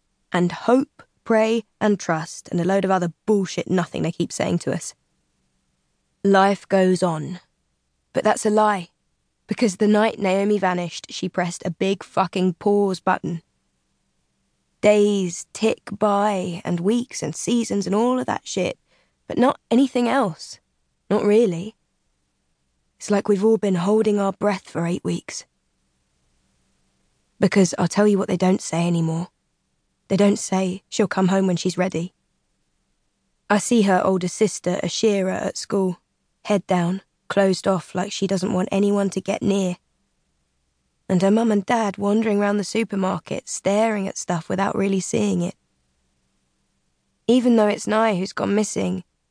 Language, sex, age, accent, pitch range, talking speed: English, female, 20-39, British, 170-205 Hz, 155 wpm